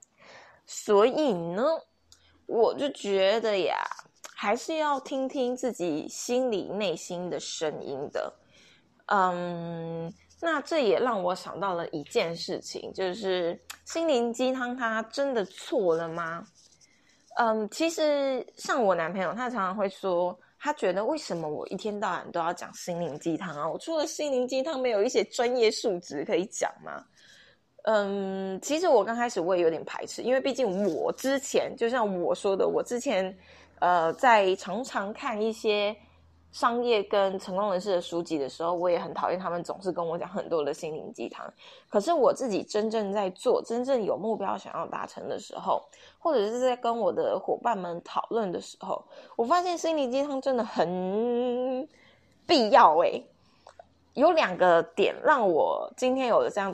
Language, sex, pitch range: Chinese, female, 180-260 Hz